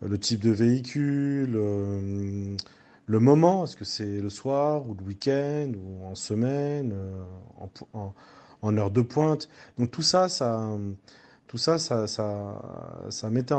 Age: 30-49